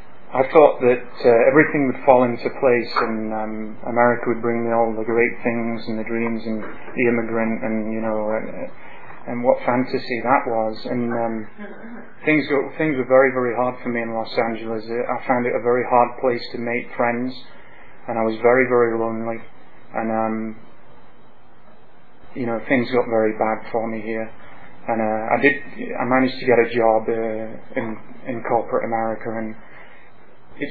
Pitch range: 115-125 Hz